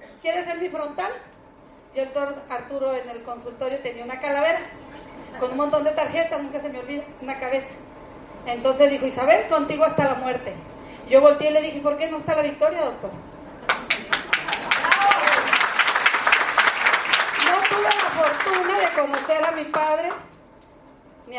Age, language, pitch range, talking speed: 40-59, Spanish, 270-310 Hz, 150 wpm